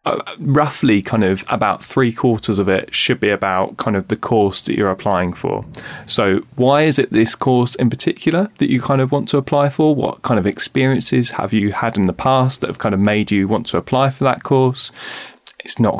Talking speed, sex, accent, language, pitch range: 225 wpm, male, British, English, 95-125 Hz